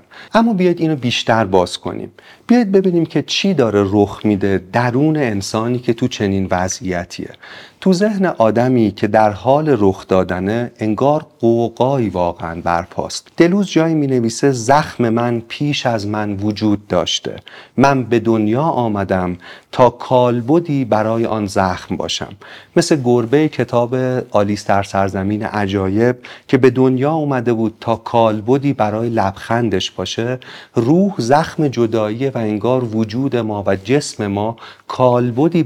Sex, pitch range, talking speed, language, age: male, 105-140 Hz, 135 wpm, Persian, 40-59